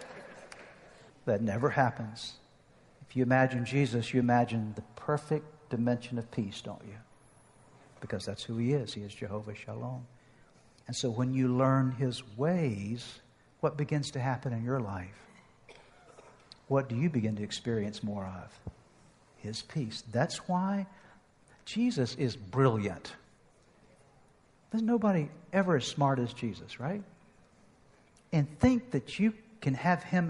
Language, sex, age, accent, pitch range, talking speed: English, male, 60-79, American, 125-190 Hz, 135 wpm